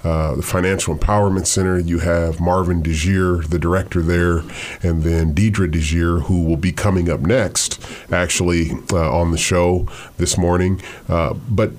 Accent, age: American, 30-49